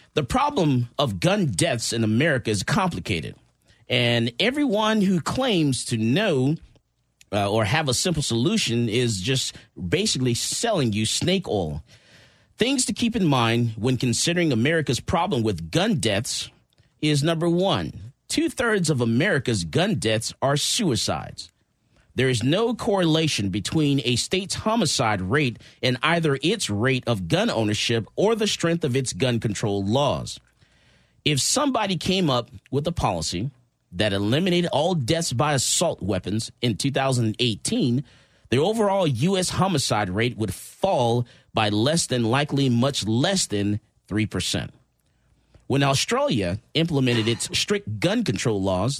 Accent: American